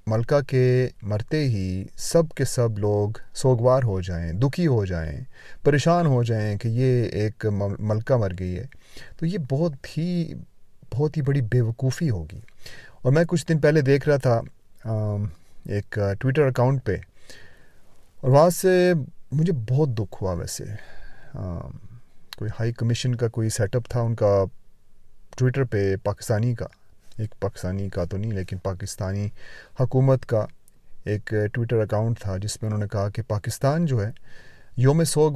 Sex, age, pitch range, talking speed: male, 30-49, 100-130 Hz, 145 wpm